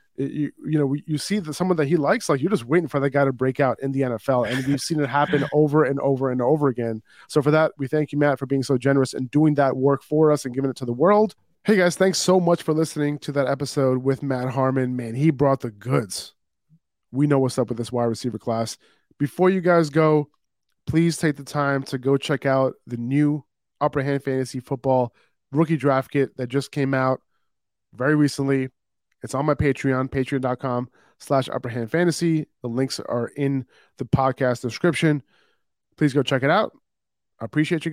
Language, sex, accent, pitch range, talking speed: English, male, American, 130-150 Hz, 205 wpm